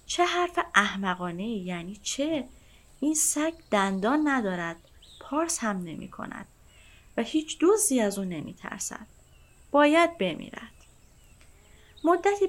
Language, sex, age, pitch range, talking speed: Persian, female, 30-49, 180-275 Hz, 110 wpm